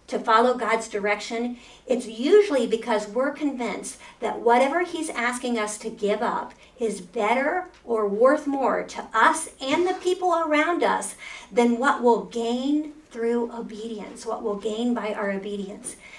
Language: English